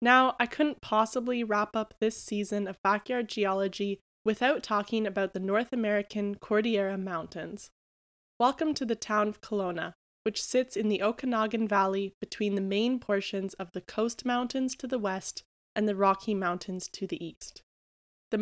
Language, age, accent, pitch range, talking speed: English, 10-29, American, 195-235 Hz, 165 wpm